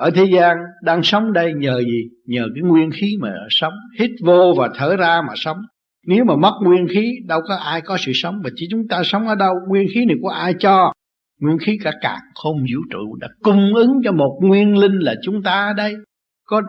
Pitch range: 140-195 Hz